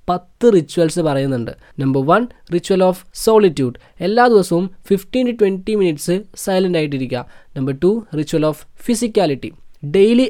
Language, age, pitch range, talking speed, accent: Malayalam, 20-39, 145-190 Hz, 130 wpm, native